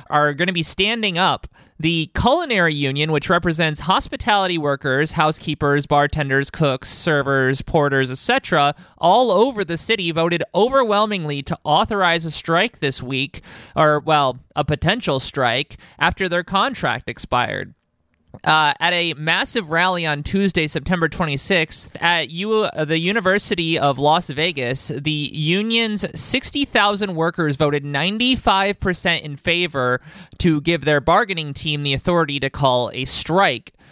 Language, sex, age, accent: English, male, 20-39, American